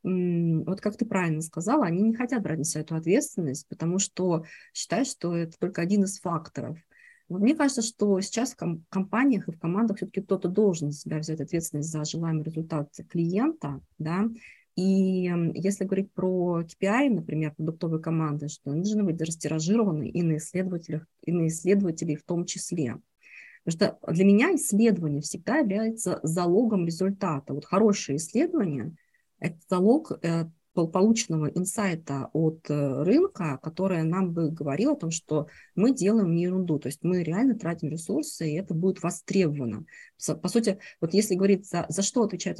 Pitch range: 160-200 Hz